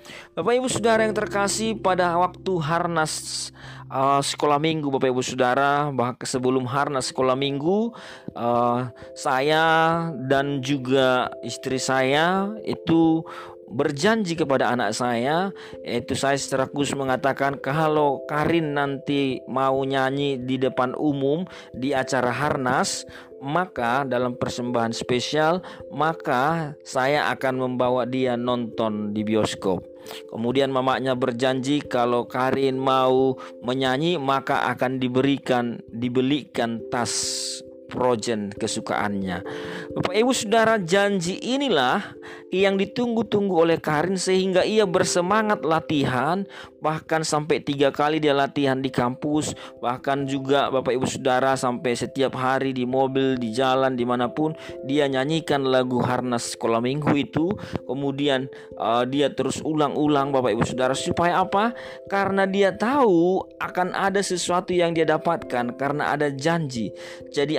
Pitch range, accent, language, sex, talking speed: 125-160 Hz, native, Indonesian, male, 120 wpm